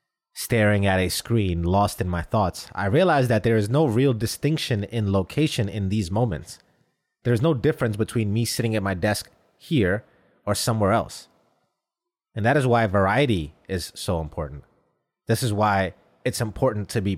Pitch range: 95-125 Hz